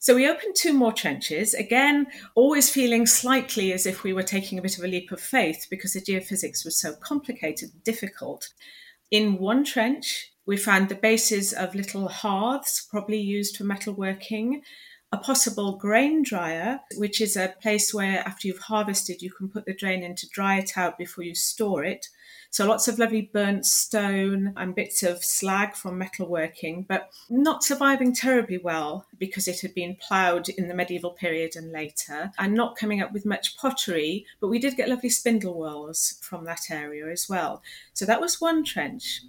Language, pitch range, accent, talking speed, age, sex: English, 180-230 Hz, British, 185 wpm, 40-59, female